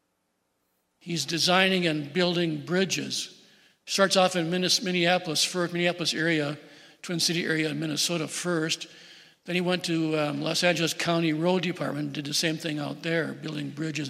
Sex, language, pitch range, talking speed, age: male, English, 150-175 Hz, 155 wpm, 60-79